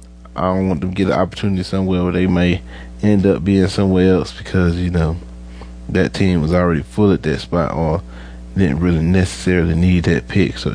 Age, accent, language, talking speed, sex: 30-49, American, English, 200 wpm, male